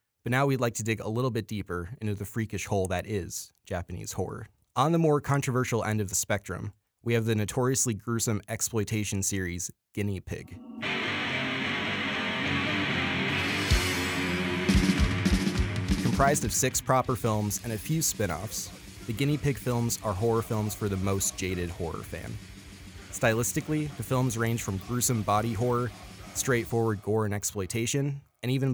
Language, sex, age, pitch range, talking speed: English, male, 20-39, 95-115 Hz, 150 wpm